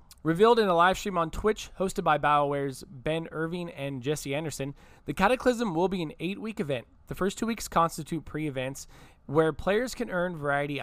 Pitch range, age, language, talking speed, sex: 145-190 Hz, 20-39, English, 185 wpm, male